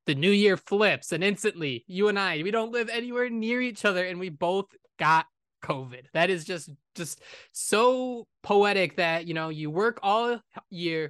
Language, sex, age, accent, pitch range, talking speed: English, male, 20-39, American, 170-220 Hz, 185 wpm